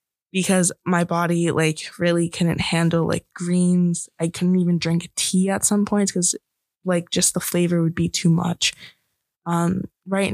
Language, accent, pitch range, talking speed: English, American, 165-195 Hz, 165 wpm